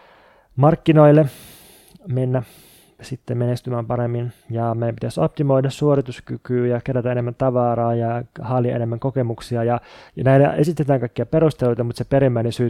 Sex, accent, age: male, native, 20-39